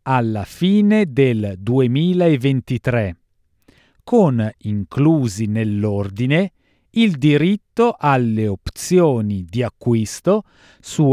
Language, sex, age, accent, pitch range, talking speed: Italian, male, 40-59, native, 110-170 Hz, 75 wpm